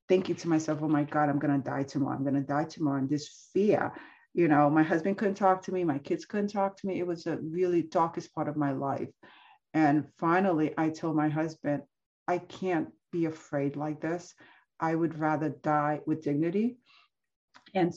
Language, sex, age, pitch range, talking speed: English, female, 40-59, 150-200 Hz, 195 wpm